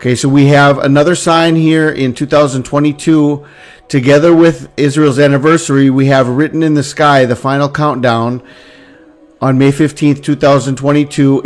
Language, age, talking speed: English, 50-69, 135 wpm